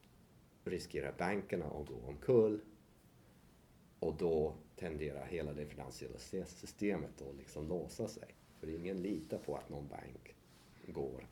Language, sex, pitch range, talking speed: Swedish, male, 70-90 Hz, 125 wpm